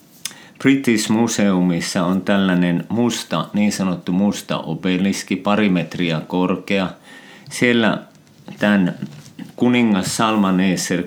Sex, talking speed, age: male, 85 wpm, 50-69